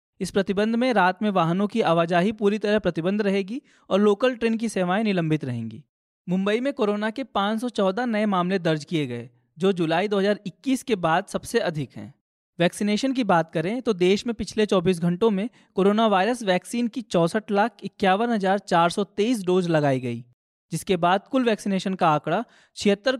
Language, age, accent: Hindi, 20-39, native